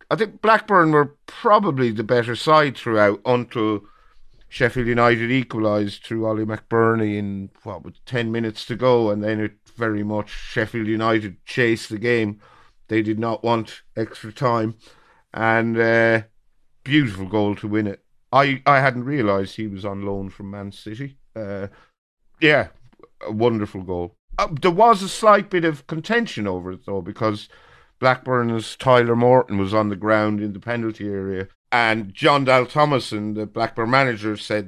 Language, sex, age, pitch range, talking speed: English, male, 50-69, 105-125 Hz, 160 wpm